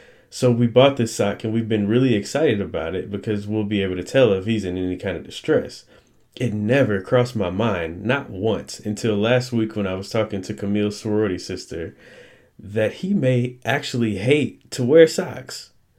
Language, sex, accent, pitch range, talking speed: English, male, American, 100-125 Hz, 190 wpm